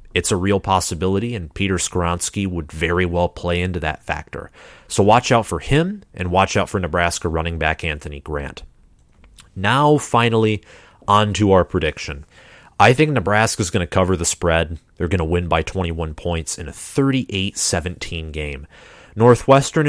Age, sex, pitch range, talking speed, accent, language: 30-49, male, 85-115 Hz, 165 wpm, American, English